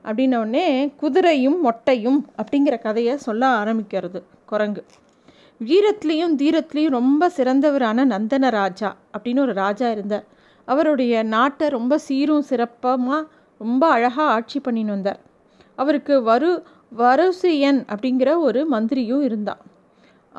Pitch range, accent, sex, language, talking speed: 230-295 Hz, native, female, Tamil, 105 wpm